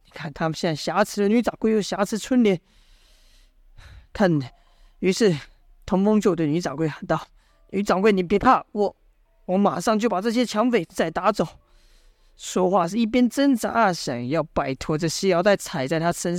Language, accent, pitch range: Chinese, native, 160-225 Hz